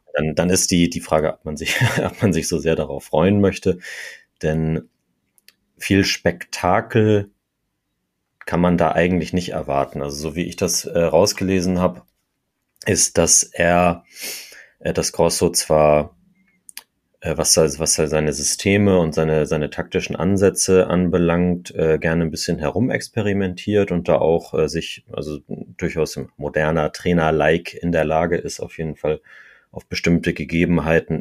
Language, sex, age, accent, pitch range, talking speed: German, male, 30-49, German, 75-90 Hz, 150 wpm